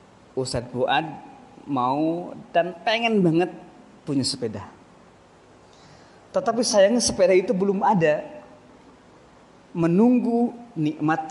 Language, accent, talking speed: Indonesian, native, 85 wpm